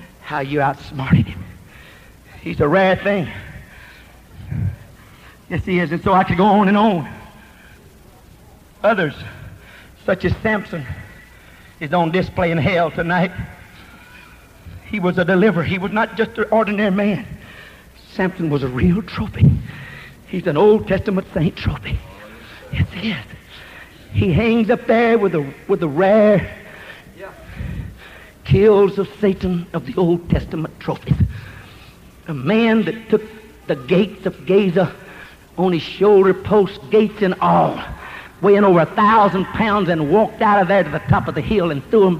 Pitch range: 170-225 Hz